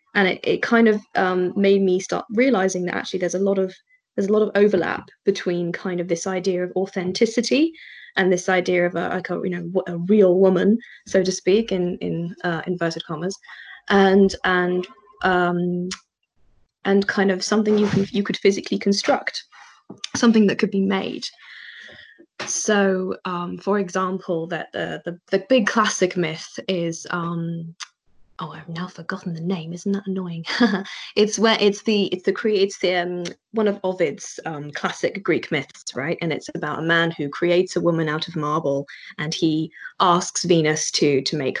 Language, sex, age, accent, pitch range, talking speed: English, female, 20-39, British, 170-200 Hz, 175 wpm